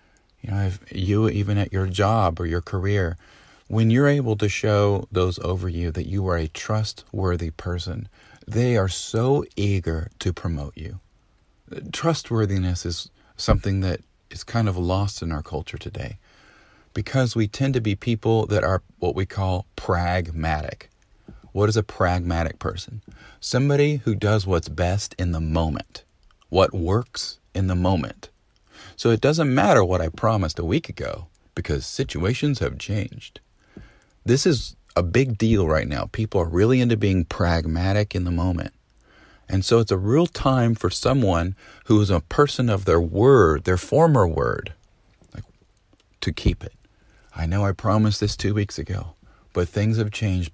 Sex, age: male, 40-59